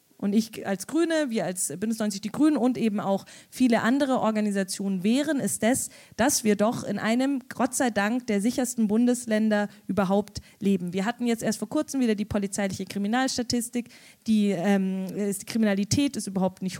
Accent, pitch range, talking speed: German, 205-250 Hz, 175 wpm